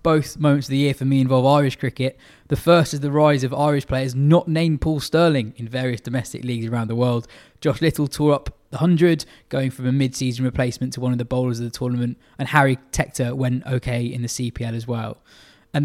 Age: 20-39